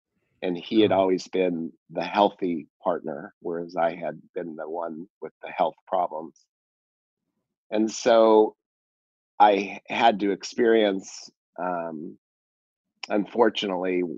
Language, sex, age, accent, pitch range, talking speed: English, male, 30-49, American, 85-100 Hz, 110 wpm